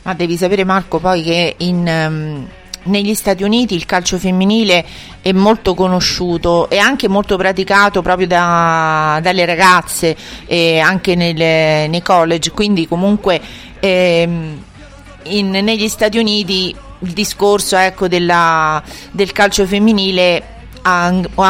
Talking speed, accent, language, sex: 105 wpm, native, Italian, female